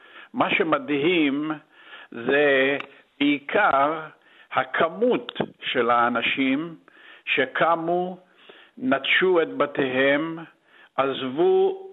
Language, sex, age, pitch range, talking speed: Hebrew, male, 50-69, 145-230 Hz, 60 wpm